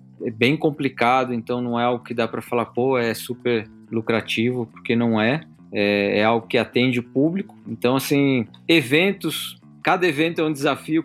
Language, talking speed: English, 180 wpm